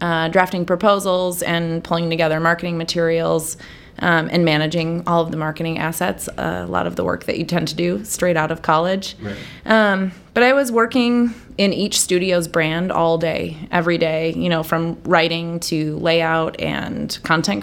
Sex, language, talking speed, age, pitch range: female, English, 175 wpm, 20-39, 160-180 Hz